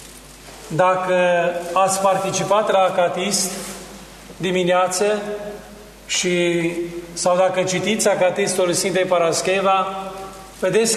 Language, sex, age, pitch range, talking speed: Romanian, male, 40-59, 185-205 Hz, 75 wpm